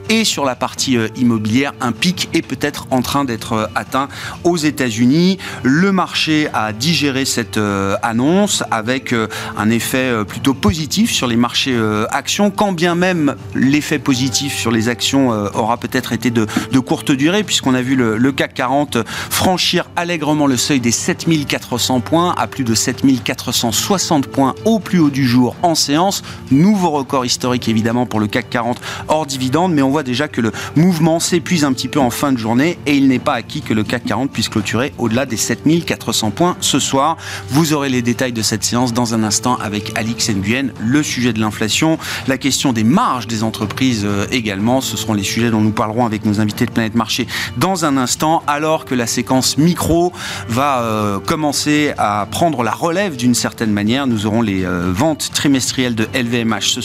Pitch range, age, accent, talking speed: 110-145 Hz, 40-59, French, 185 wpm